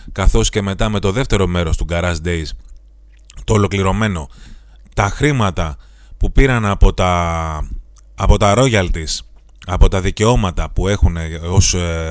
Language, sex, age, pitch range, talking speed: Greek, male, 30-49, 85-130 Hz, 135 wpm